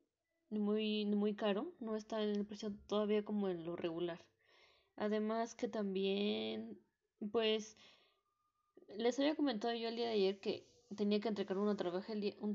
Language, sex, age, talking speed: English, female, 20-39, 155 wpm